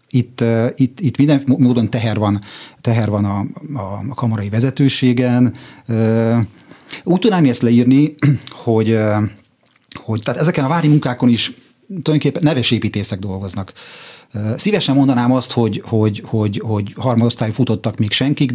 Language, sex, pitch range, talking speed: Hungarian, male, 110-135 Hz, 130 wpm